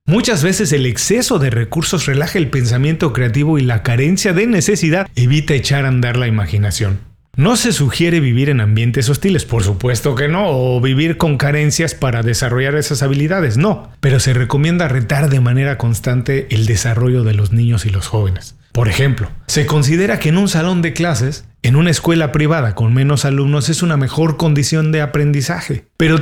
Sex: male